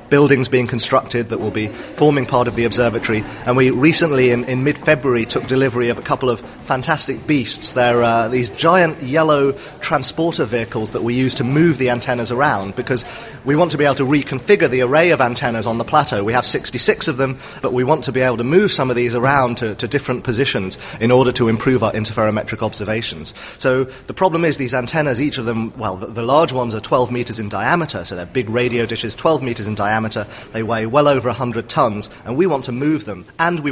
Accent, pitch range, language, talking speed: British, 110-135 Hz, English, 220 wpm